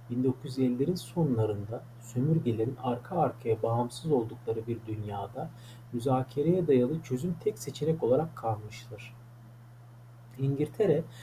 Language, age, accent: English, 40-59, Turkish